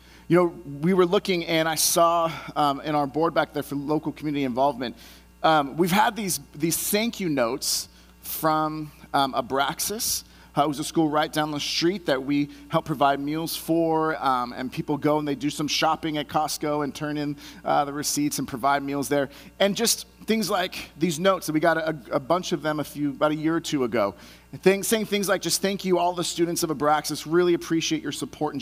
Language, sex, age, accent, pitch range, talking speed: English, male, 30-49, American, 130-170 Hz, 220 wpm